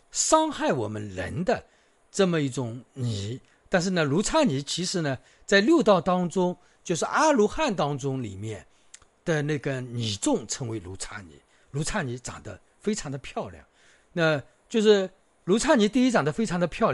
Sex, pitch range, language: male, 120-205 Hz, Chinese